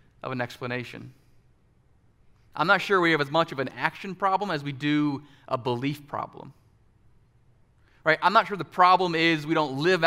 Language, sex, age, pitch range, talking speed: English, male, 30-49, 120-155 Hz, 180 wpm